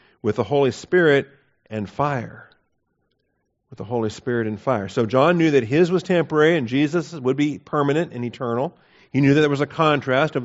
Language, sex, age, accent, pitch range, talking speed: English, male, 50-69, American, 120-145 Hz, 195 wpm